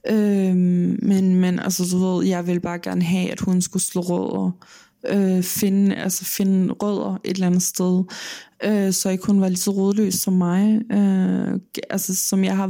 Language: Danish